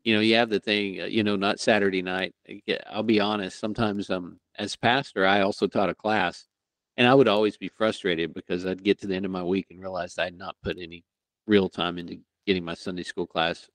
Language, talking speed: English, 230 wpm